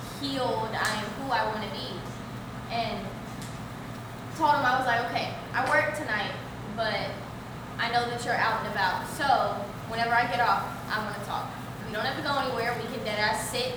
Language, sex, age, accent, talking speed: English, female, 10-29, American, 195 wpm